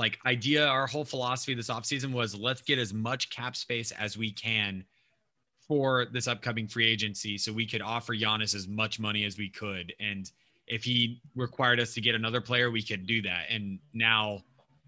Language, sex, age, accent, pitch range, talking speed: English, male, 20-39, American, 110-130 Hz, 195 wpm